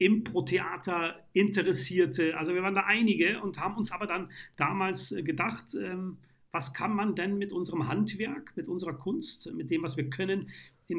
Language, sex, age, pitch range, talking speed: German, male, 40-59, 135-175 Hz, 165 wpm